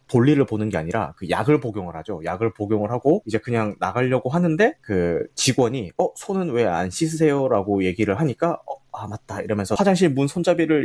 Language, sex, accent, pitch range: Korean, male, native, 110-165 Hz